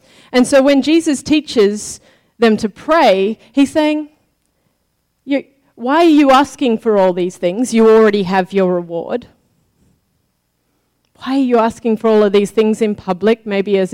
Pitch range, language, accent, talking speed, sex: 185-230 Hz, English, Australian, 155 wpm, female